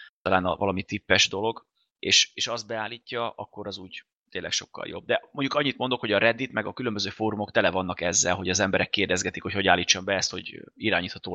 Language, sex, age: Hungarian, male, 20-39